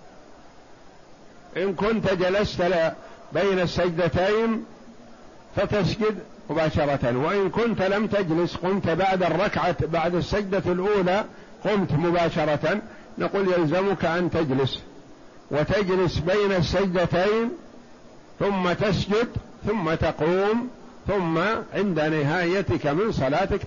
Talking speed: 90 wpm